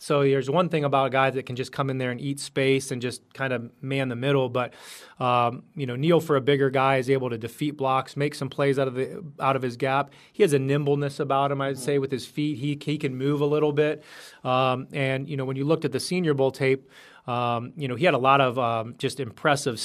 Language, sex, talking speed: English, male, 265 wpm